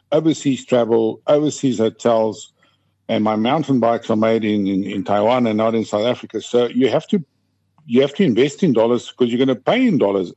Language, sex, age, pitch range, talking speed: English, male, 50-69, 105-135 Hz, 210 wpm